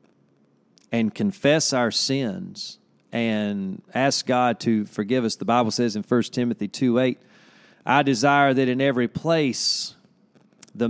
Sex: male